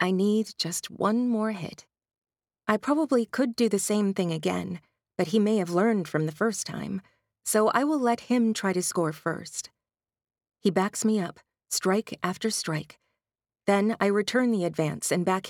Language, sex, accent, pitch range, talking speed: English, female, American, 180-220 Hz, 180 wpm